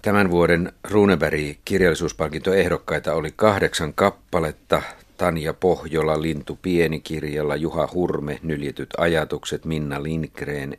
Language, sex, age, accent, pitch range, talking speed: Finnish, male, 50-69, native, 75-85 Hz, 100 wpm